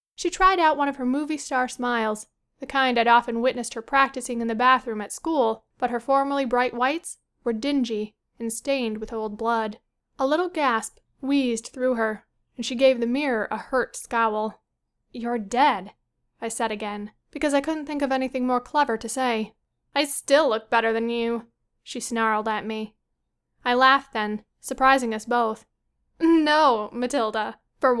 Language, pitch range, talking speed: English, 230-275 Hz, 175 wpm